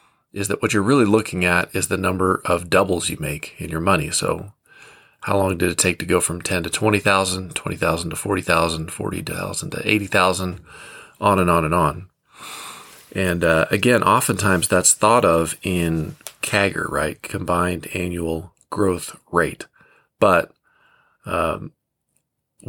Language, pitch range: English, 85-100 Hz